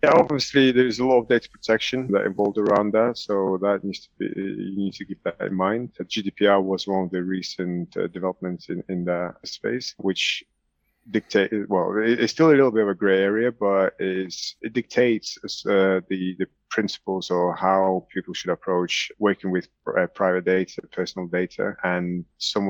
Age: 30-49